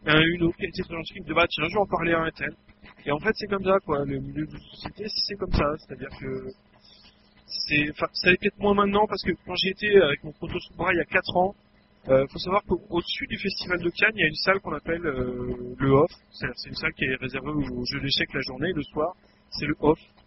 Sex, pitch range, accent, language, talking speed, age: male, 140-185 Hz, French, French, 260 wpm, 30-49